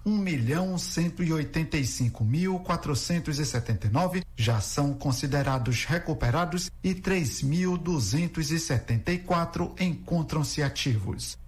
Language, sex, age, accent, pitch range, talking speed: Portuguese, male, 60-79, Brazilian, 135-180 Hz, 50 wpm